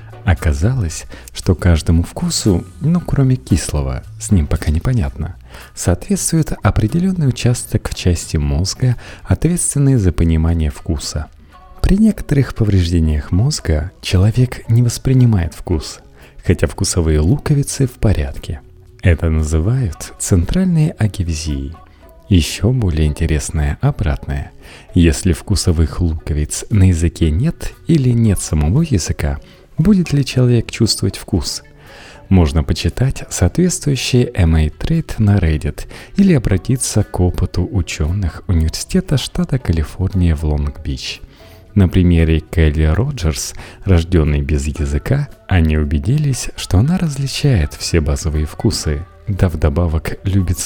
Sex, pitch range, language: male, 80-120 Hz, Russian